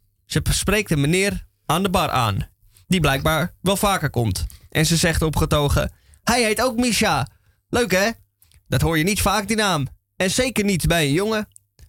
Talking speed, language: 180 wpm, Dutch